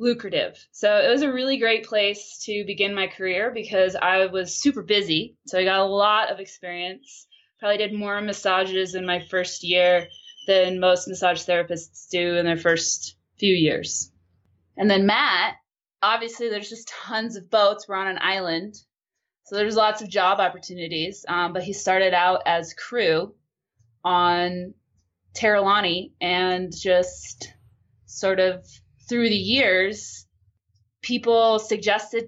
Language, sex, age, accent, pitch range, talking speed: English, female, 20-39, American, 175-215 Hz, 145 wpm